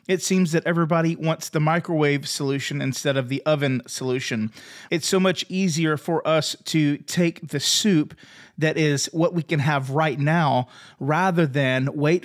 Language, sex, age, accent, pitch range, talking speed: English, male, 30-49, American, 145-185 Hz, 165 wpm